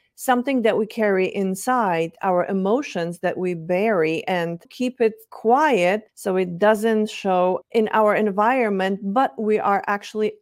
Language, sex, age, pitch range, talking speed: English, female, 40-59, 185-230 Hz, 145 wpm